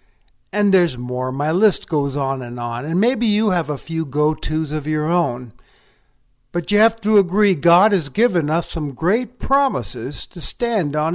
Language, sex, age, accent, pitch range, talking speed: English, male, 60-79, American, 150-200 Hz, 185 wpm